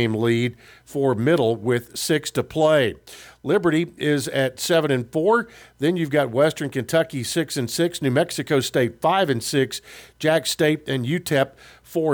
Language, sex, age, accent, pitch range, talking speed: English, male, 50-69, American, 125-160 Hz, 160 wpm